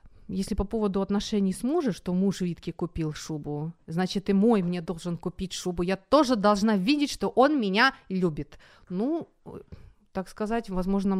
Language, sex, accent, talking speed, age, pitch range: Ukrainian, female, native, 160 wpm, 30-49, 175-240 Hz